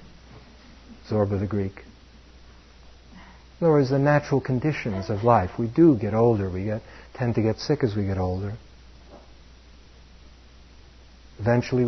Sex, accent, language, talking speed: male, American, English, 130 wpm